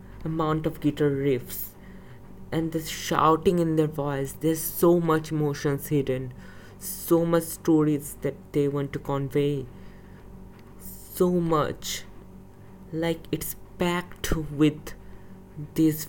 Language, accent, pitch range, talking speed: English, Indian, 95-160 Hz, 110 wpm